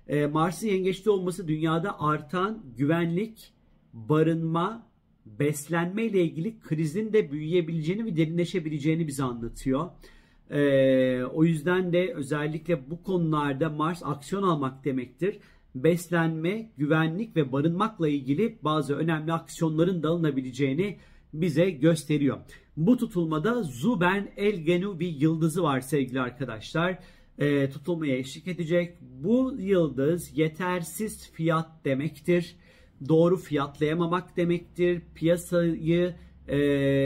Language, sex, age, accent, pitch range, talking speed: Turkish, male, 40-59, native, 145-180 Hz, 100 wpm